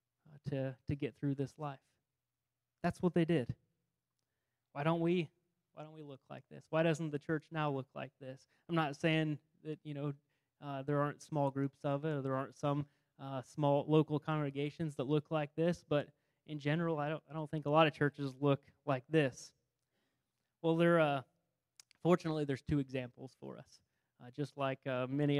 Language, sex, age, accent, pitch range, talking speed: English, male, 20-39, American, 140-165 Hz, 190 wpm